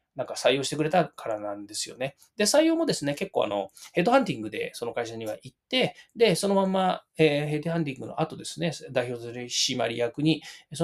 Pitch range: 115-160 Hz